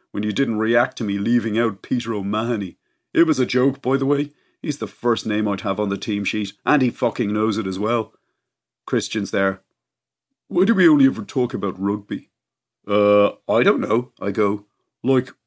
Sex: male